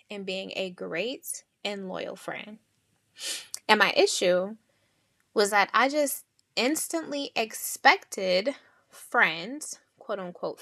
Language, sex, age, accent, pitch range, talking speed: English, female, 10-29, American, 195-270 Hz, 105 wpm